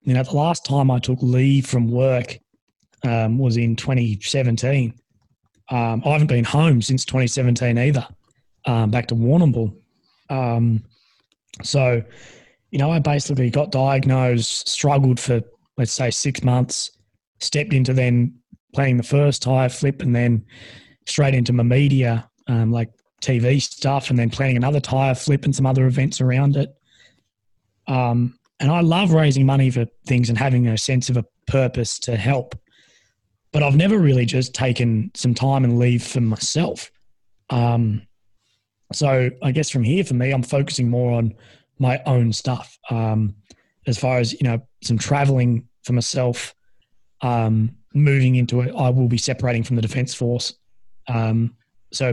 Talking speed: 160 wpm